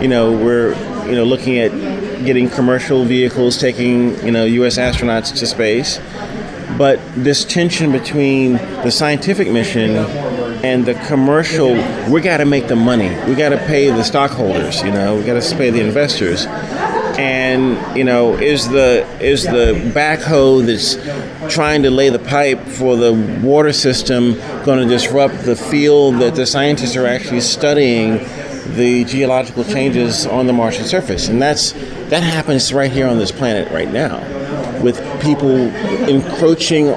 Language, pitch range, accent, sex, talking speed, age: English, 125-145 Hz, American, male, 155 wpm, 30-49